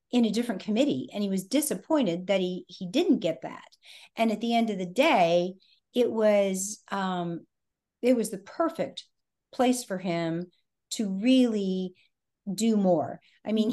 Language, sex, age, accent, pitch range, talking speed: English, female, 50-69, American, 185-240 Hz, 160 wpm